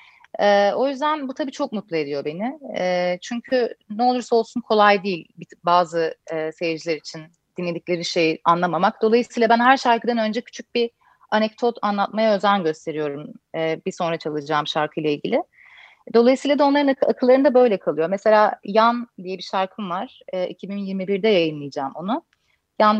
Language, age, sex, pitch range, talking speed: Turkish, 30-49, female, 170-245 Hz, 150 wpm